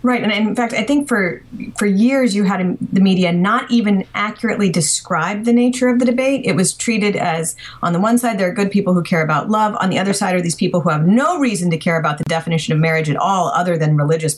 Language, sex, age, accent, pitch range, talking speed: English, female, 30-49, American, 170-225 Hz, 255 wpm